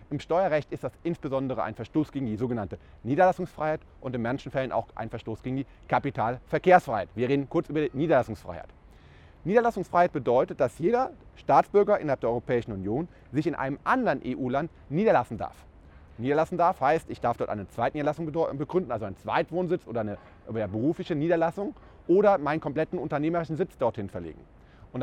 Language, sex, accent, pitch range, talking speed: German, male, German, 115-175 Hz, 165 wpm